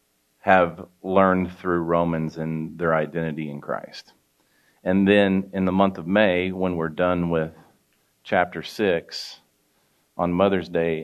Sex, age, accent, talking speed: male, 40-59, American, 135 wpm